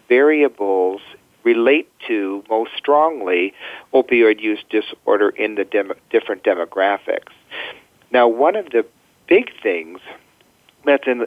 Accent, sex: American, male